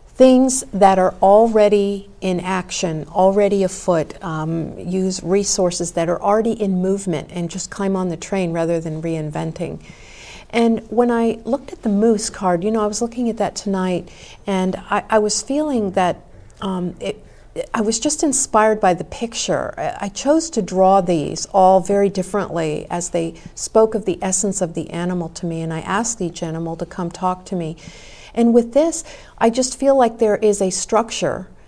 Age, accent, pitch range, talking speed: 50-69, American, 180-220 Hz, 180 wpm